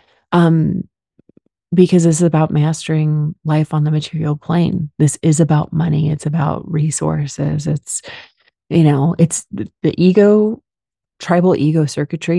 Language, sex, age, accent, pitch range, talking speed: English, female, 30-49, American, 150-170 Hz, 130 wpm